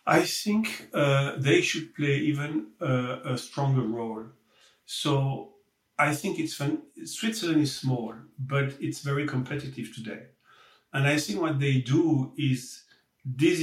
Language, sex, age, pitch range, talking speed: English, male, 50-69, 130-155 Hz, 140 wpm